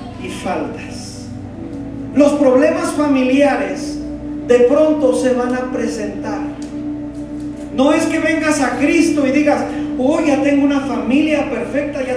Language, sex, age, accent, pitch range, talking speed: Spanish, male, 40-59, Mexican, 255-295 Hz, 125 wpm